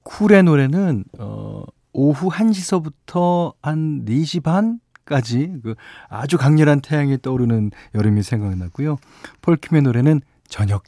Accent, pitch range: native, 110-155 Hz